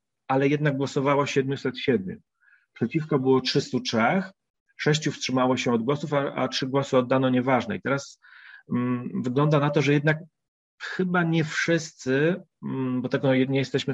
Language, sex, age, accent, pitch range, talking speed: Polish, male, 30-49, native, 125-150 Hz, 145 wpm